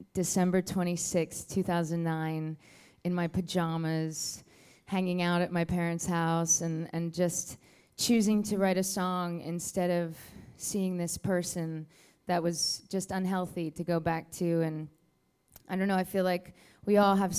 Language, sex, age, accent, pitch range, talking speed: English, female, 20-39, American, 165-195 Hz, 150 wpm